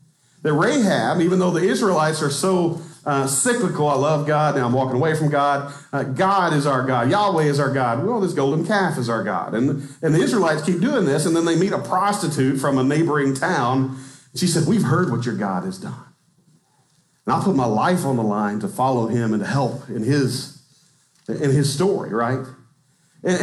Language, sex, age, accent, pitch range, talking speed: English, male, 40-59, American, 135-185 Hz, 205 wpm